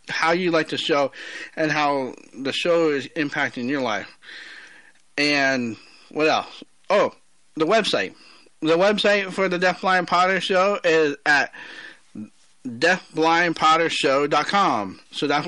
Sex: male